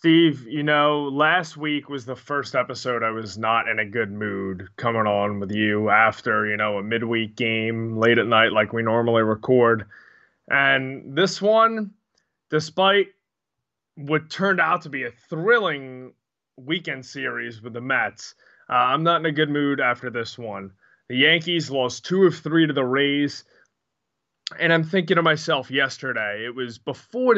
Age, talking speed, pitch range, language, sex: 20-39, 170 wpm, 120-165 Hz, English, male